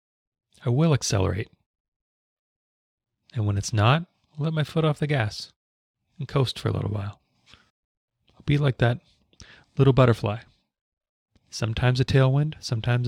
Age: 30-49